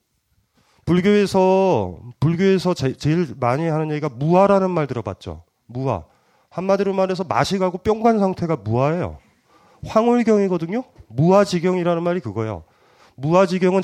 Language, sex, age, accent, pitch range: Korean, male, 30-49, native, 115-170 Hz